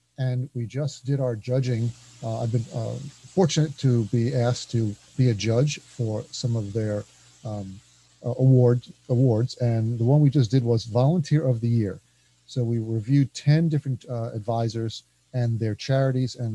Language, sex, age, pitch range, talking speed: English, male, 40-59, 110-130 Hz, 170 wpm